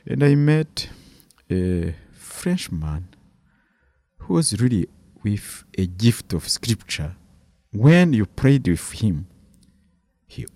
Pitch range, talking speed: 90-140 Hz, 110 wpm